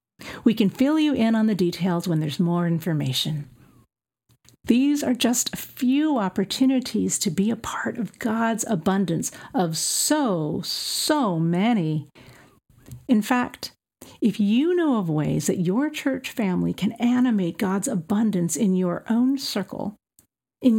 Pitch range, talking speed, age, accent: 180-245 Hz, 140 wpm, 50-69, American